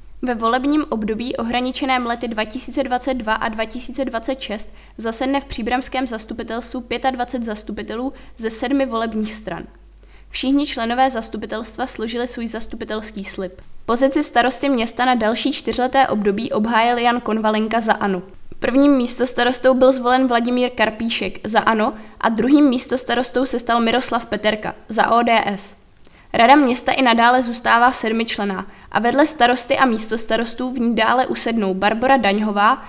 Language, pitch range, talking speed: Czech, 215-255 Hz, 135 wpm